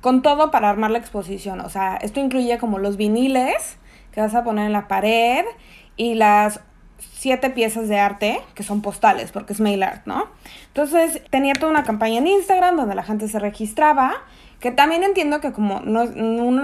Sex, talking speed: female, 190 wpm